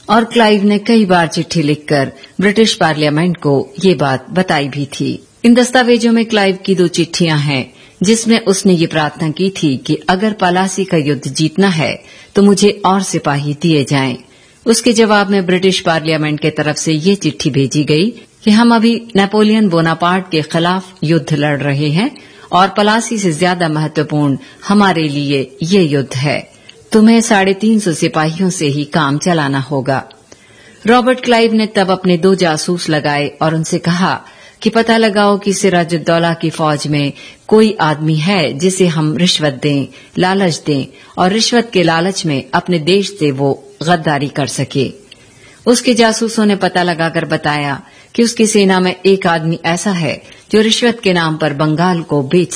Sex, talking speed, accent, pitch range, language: female, 170 wpm, native, 150-200 Hz, Hindi